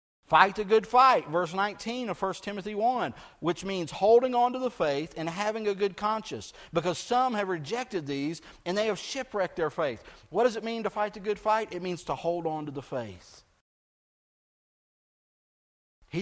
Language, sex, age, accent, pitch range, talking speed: English, male, 50-69, American, 170-225 Hz, 190 wpm